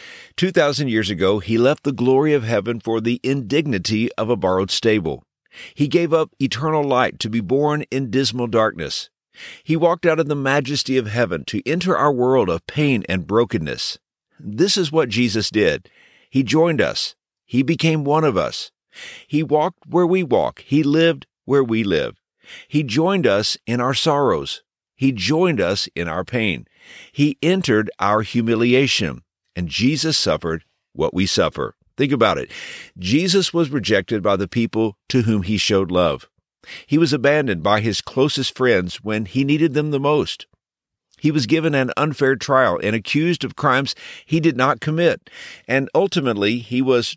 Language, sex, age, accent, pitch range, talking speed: English, male, 50-69, American, 110-150 Hz, 170 wpm